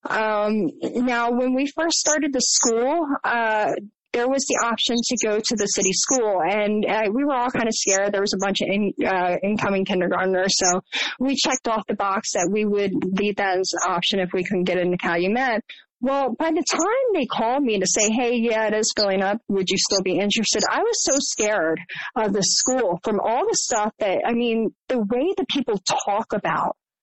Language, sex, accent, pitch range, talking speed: English, female, American, 195-255 Hz, 215 wpm